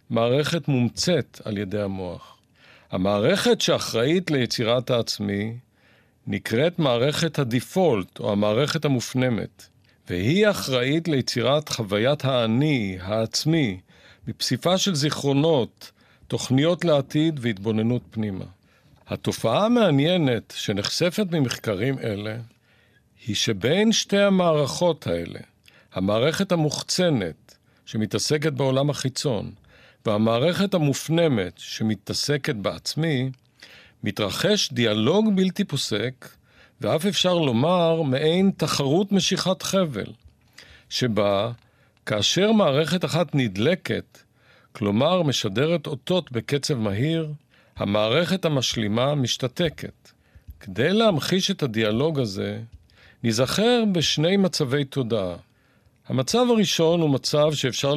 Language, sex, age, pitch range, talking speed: Hebrew, male, 50-69, 110-165 Hz, 90 wpm